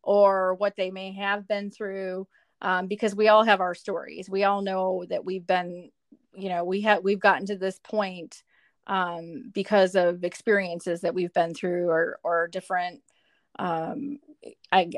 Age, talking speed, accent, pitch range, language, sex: 30-49, 165 wpm, American, 185-210 Hz, English, female